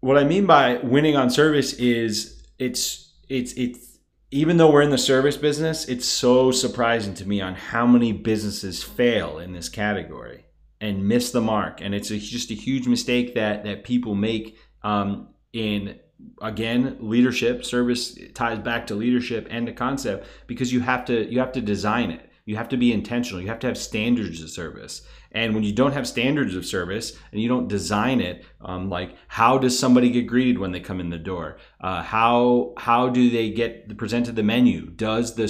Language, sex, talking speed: English, male, 200 wpm